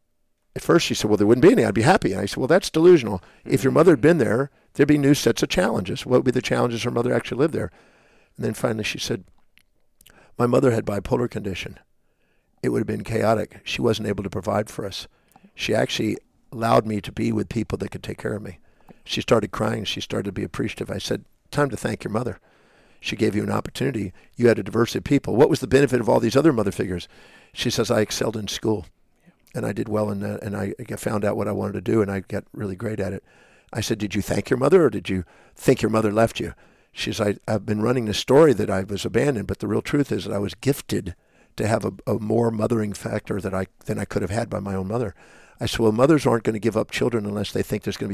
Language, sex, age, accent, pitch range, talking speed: English, male, 50-69, American, 100-120 Hz, 260 wpm